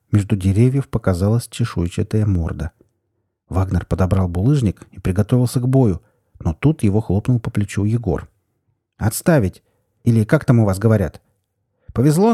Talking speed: 130 wpm